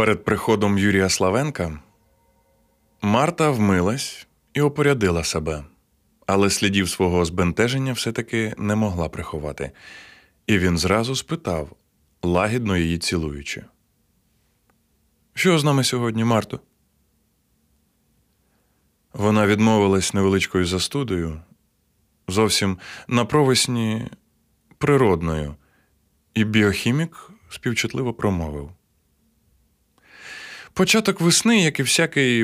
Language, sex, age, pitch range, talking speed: Ukrainian, male, 20-39, 90-135 Hz, 85 wpm